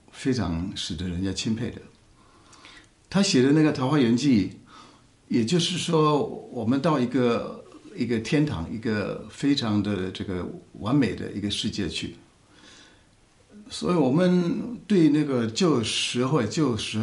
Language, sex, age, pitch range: Chinese, male, 60-79, 95-140 Hz